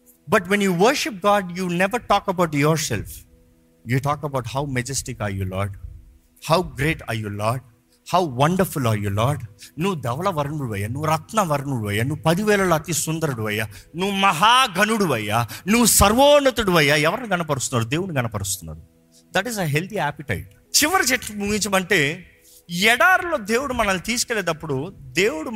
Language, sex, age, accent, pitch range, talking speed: Telugu, male, 50-69, native, 135-215 Hz, 145 wpm